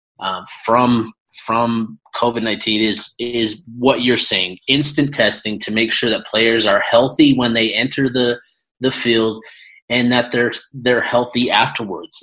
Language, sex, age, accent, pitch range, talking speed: English, male, 30-49, American, 105-125 Hz, 150 wpm